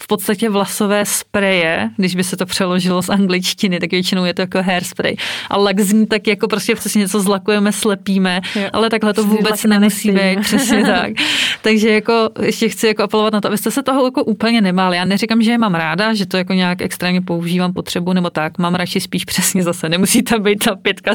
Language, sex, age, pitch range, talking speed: Czech, female, 30-49, 185-210 Hz, 205 wpm